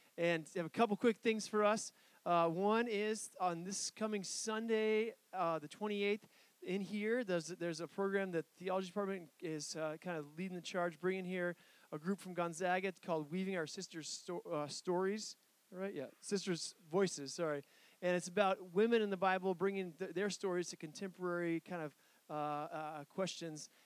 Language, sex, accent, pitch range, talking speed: English, male, American, 165-200 Hz, 180 wpm